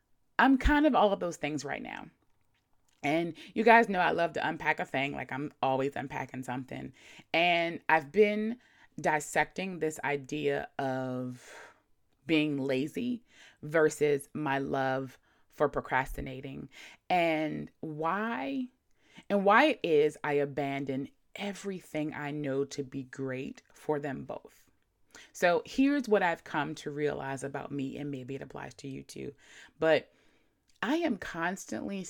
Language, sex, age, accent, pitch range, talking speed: English, female, 20-39, American, 140-200 Hz, 140 wpm